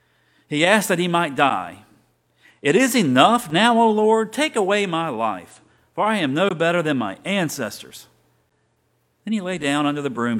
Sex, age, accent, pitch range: male, 50-69, American, 115-175 Hz